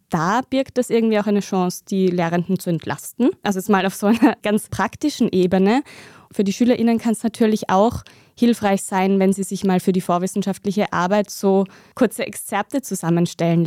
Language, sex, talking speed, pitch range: German, female, 180 wpm, 185-220 Hz